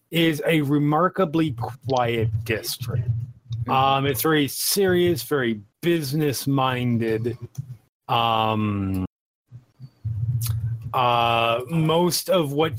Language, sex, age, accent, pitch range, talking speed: English, male, 30-49, American, 115-140 Hz, 75 wpm